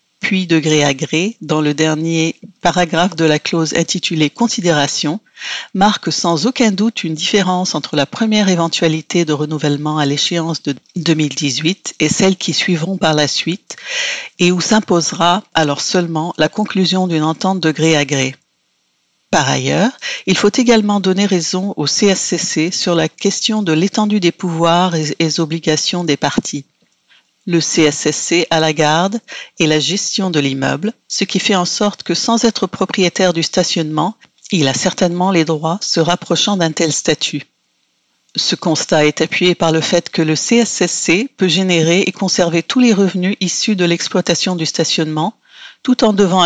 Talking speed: 160 wpm